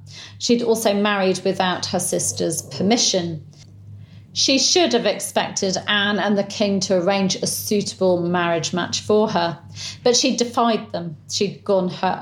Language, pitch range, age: English, 170-225 Hz, 40-59